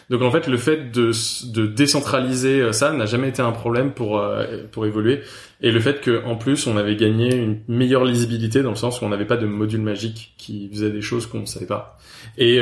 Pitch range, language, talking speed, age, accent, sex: 110-125 Hz, French, 230 wpm, 20-39, French, male